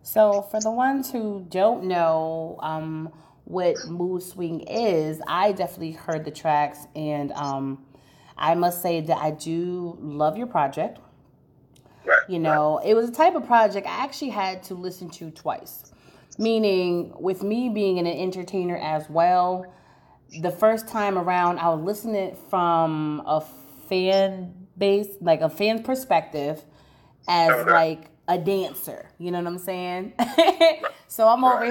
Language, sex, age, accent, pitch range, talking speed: English, female, 30-49, American, 170-230 Hz, 150 wpm